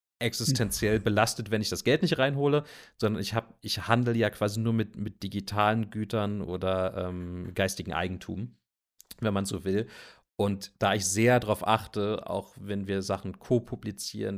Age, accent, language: 40-59, German, German